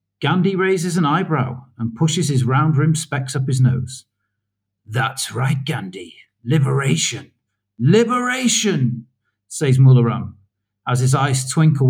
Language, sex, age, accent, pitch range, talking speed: English, male, 50-69, British, 115-150 Hz, 115 wpm